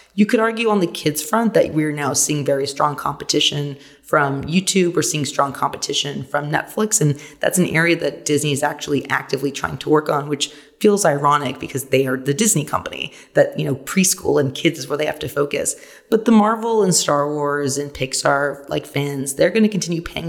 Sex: female